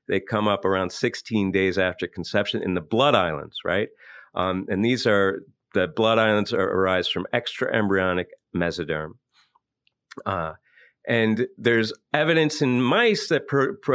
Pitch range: 95-125 Hz